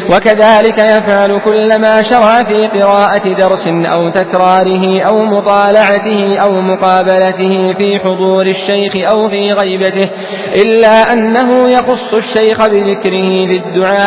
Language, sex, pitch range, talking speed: Arabic, male, 185-210 Hz, 110 wpm